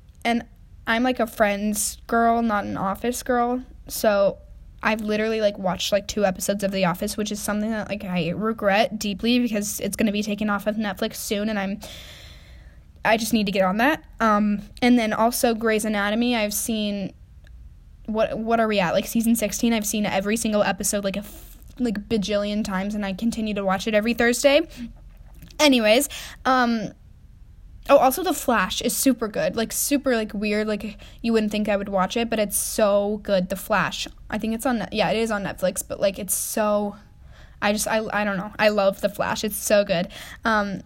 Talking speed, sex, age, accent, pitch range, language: 205 wpm, female, 10-29, American, 200-230 Hz, English